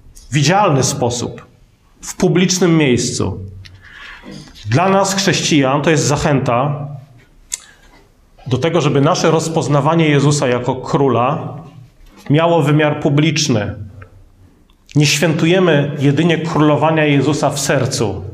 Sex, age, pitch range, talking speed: male, 40-59, 125-165 Hz, 95 wpm